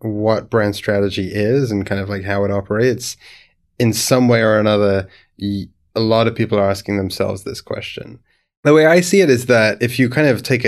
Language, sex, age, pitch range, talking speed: English, male, 20-39, 100-115 Hz, 210 wpm